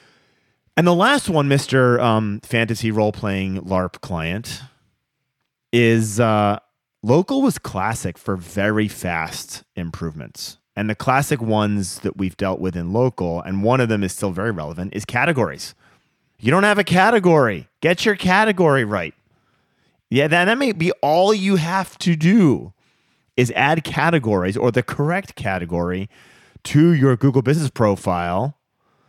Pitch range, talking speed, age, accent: 100-155 Hz, 145 wpm, 30-49, American